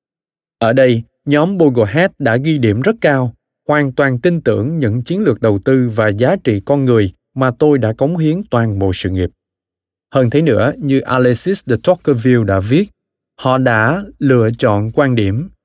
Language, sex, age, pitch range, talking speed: Vietnamese, male, 20-39, 110-150 Hz, 180 wpm